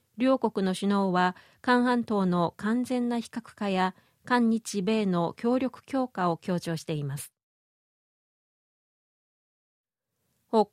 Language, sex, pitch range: Japanese, female, 185-250 Hz